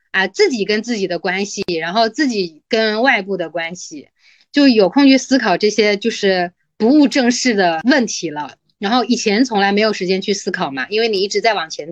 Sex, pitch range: female, 185-265 Hz